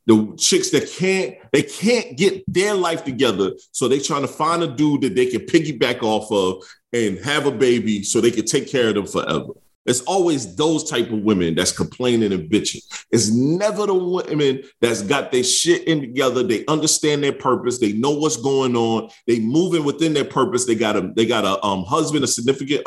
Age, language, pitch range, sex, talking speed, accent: 30-49, English, 110-150 Hz, male, 205 wpm, American